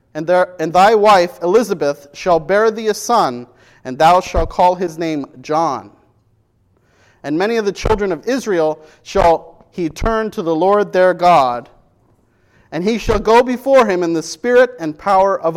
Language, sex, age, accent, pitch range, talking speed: English, male, 40-59, American, 130-200 Hz, 170 wpm